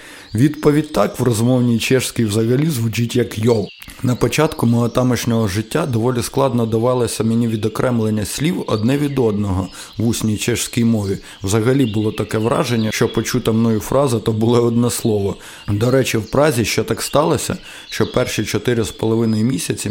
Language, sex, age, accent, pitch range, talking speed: Ukrainian, male, 20-39, native, 110-125 Hz, 150 wpm